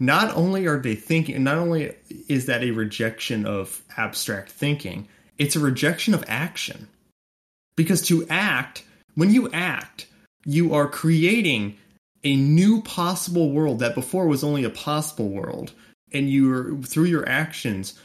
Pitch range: 115-155 Hz